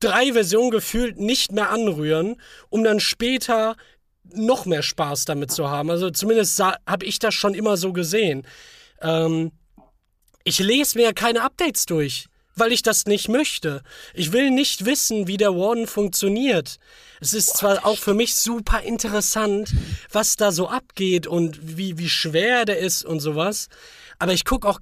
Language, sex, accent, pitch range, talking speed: German, male, German, 160-215 Hz, 165 wpm